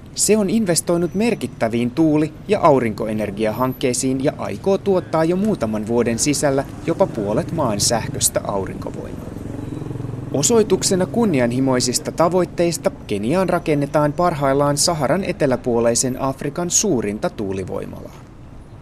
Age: 30-49